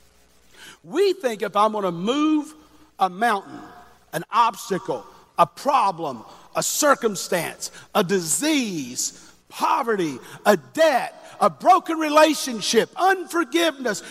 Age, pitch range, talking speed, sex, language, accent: 50-69, 145-225 Hz, 100 wpm, male, English, American